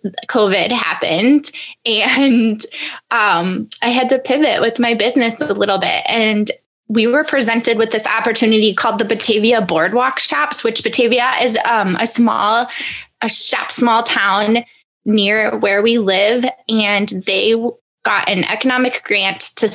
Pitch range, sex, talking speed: 210-250 Hz, female, 145 wpm